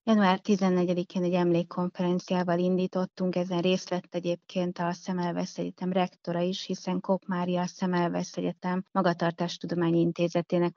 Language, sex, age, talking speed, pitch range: Hungarian, female, 20-39, 95 wpm, 170-185 Hz